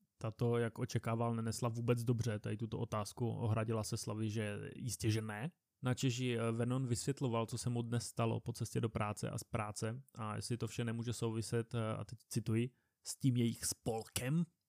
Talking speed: 180 wpm